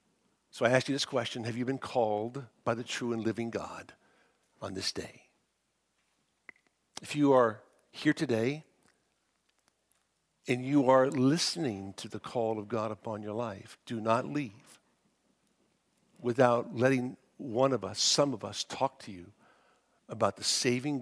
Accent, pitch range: American, 110-145 Hz